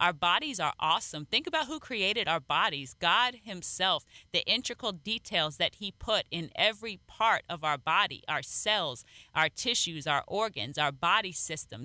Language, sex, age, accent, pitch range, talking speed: English, female, 30-49, American, 170-215 Hz, 165 wpm